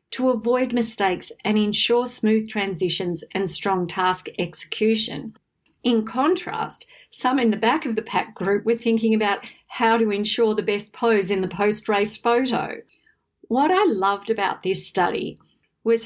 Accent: Australian